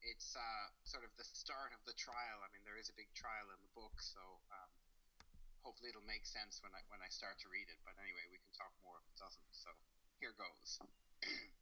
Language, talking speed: English, 225 wpm